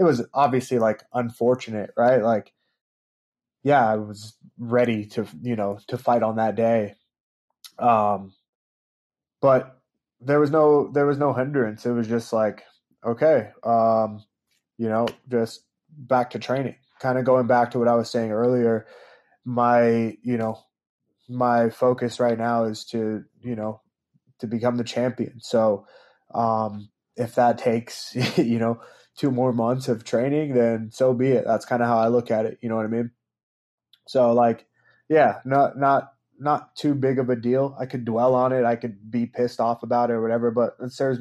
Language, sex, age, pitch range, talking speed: English, male, 20-39, 115-125 Hz, 180 wpm